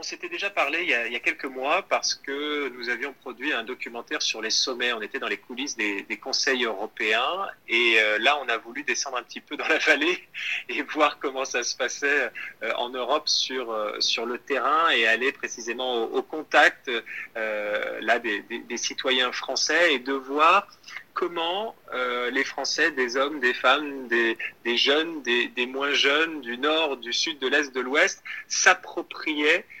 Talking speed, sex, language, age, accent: 195 wpm, male, French, 30-49, French